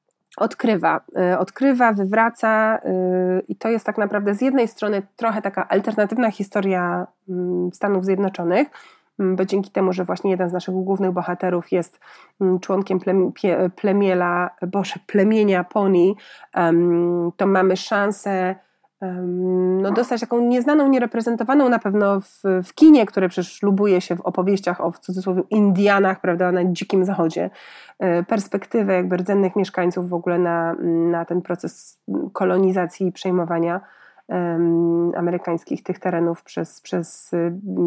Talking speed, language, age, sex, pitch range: 120 wpm, Polish, 30-49, female, 180-220 Hz